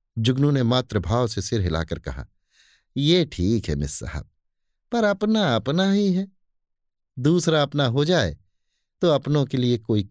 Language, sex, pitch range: Hindi, male, 95-150 Hz